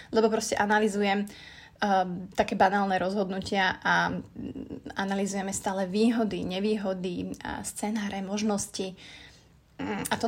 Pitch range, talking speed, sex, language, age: 195-225 Hz, 100 wpm, female, Slovak, 20-39